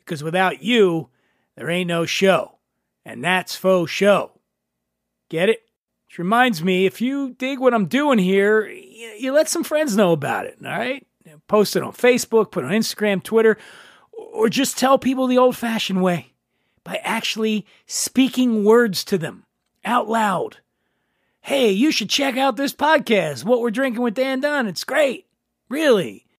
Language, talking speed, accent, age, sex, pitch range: English, 165 wpm, American, 40-59, male, 175-240 Hz